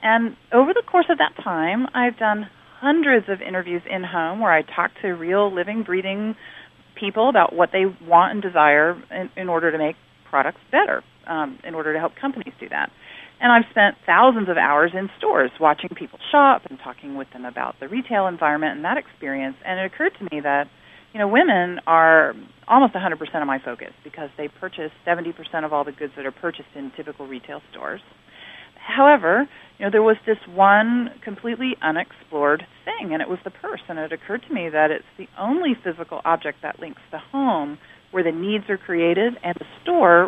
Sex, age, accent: female, 40-59, American